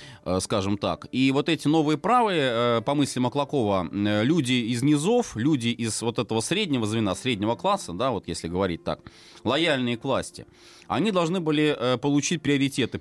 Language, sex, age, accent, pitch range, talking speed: Russian, male, 30-49, native, 110-145 Hz, 155 wpm